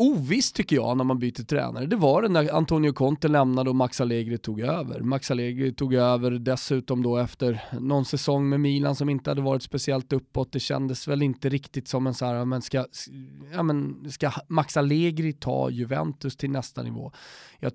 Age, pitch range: 20-39, 125-150 Hz